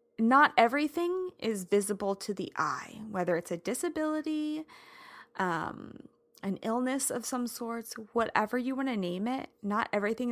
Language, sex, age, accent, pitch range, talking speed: English, female, 20-39, American, 205-265 Hz, 145 wpm